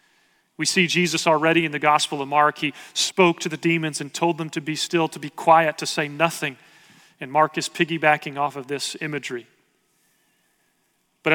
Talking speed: 185 wpm